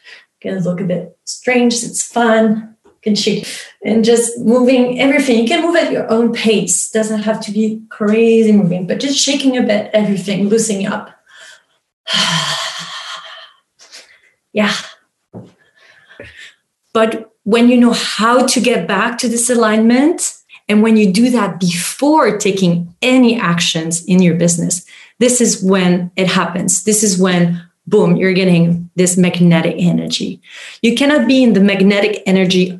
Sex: female